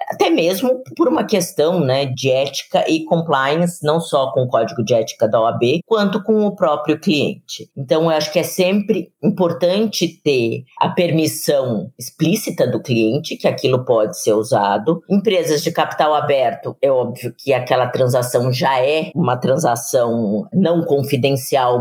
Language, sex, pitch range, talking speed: Portuguese, female, 140-185 Hz, 155 wpm